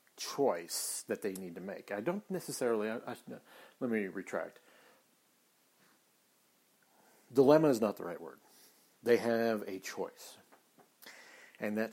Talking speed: 120 wpm